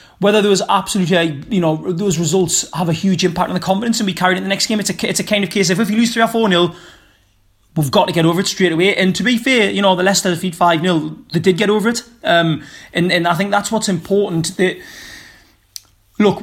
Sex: male